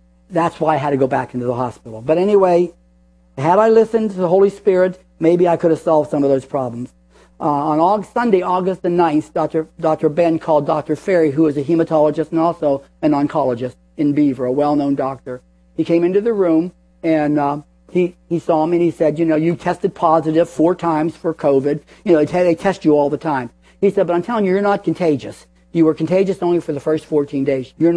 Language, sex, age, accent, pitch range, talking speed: English, male, 50-69, American, 145-180 Hz, 225 wpm